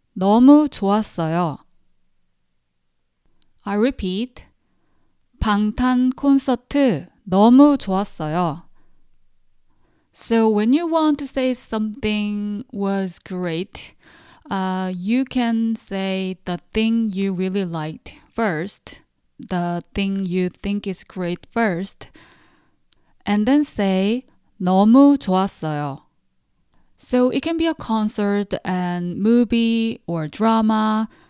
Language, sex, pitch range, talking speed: English, female, 185-235 Hz, 95 wpm